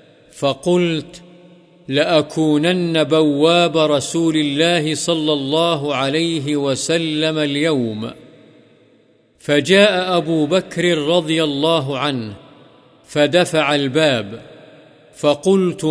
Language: Urdu